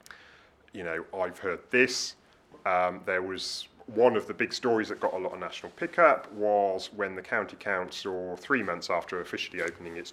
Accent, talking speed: British, 185 wpm